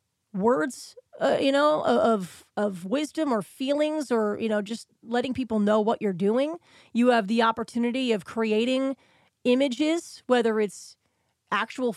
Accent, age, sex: American, 30-49, female